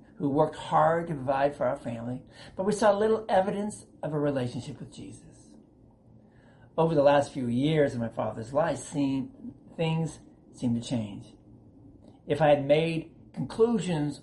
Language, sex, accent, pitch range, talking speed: German, male, American, 125-165 Hz, 150 wpm